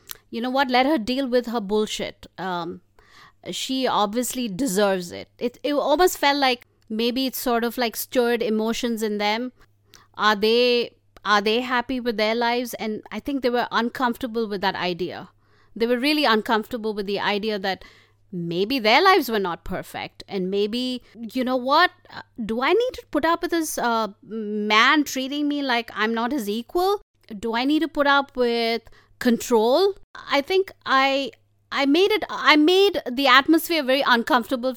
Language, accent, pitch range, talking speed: English, Indian, 210-270 Hz, 175 wpm